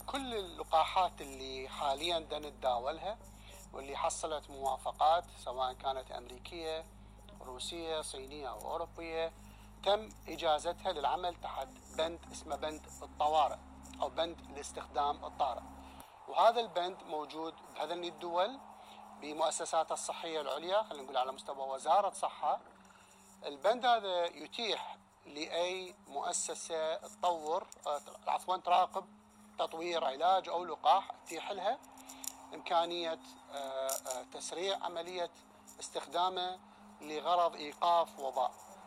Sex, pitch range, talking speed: male, 150-190 Hz, 95 wpm